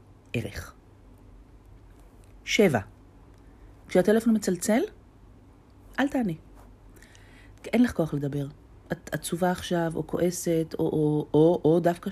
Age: 40-59